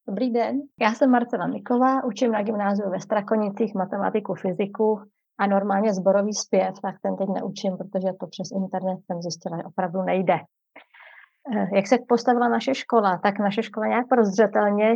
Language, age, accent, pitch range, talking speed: Czech, 30-49, native, 190-210 Hz, 160 wpm